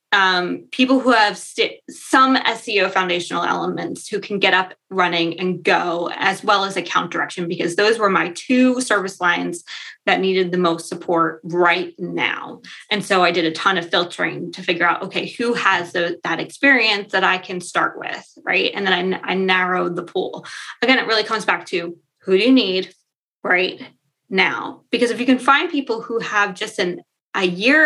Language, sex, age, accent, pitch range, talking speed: English, female, 20-39, American, 180-230 Hz, 185 wpm